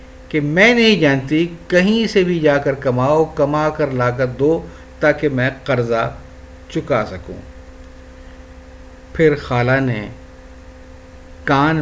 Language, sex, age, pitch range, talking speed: Urdu, male, 50-69, 85-145 Hz, 115 wpm